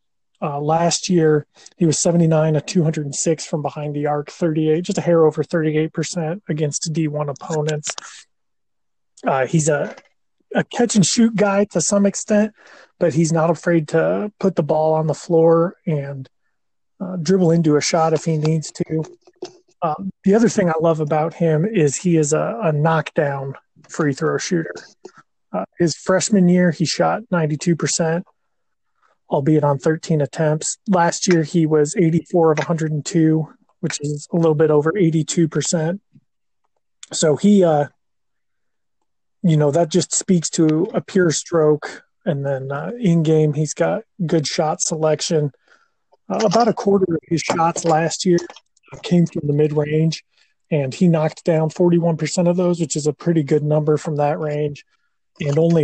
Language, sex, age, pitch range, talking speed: English, male, 30-49, 155-175 Hz, 155 wpm